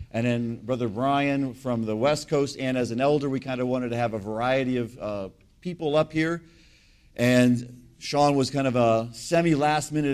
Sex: male